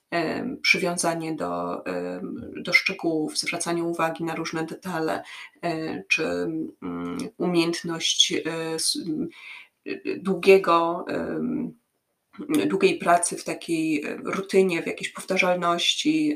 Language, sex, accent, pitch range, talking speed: Polish, female, native, 170-195 Hz, 70 wpm